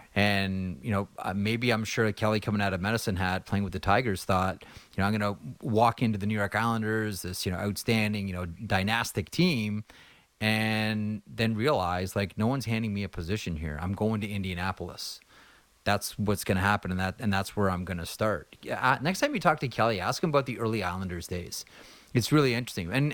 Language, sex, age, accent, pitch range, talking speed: English, male, 30-49, American, 95-120 Hz, 220 wpm